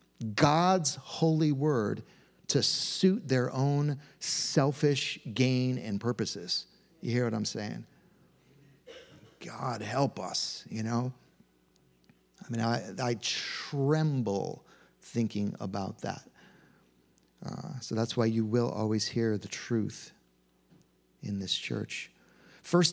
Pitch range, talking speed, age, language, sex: 120-160 Hz, 115 wpm, 50-69, English, male